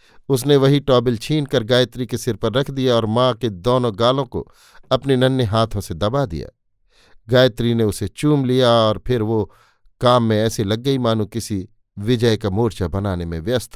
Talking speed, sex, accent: 190 wpm, male, native